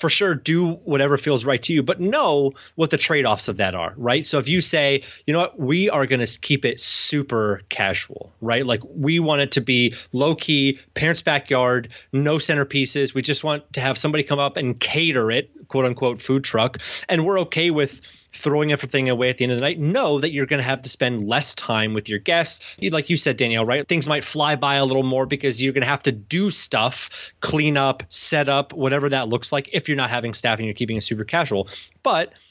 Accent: American